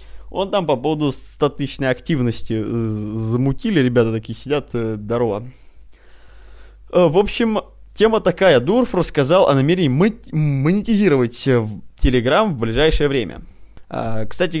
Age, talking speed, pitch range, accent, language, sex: 20-39, 105 wpm, 120-170 Hz, native, Russian, male